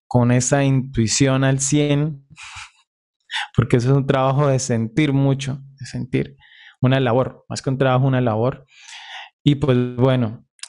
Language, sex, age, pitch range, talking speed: Spanish, male, 20-39, 125-150 Hz, 145 wpm